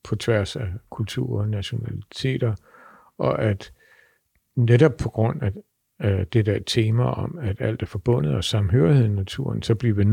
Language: Danish